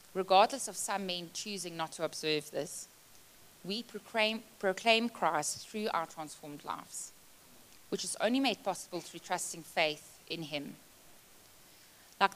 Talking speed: 135 wpm